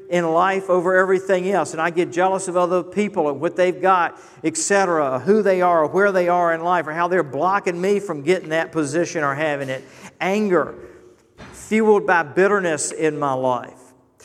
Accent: American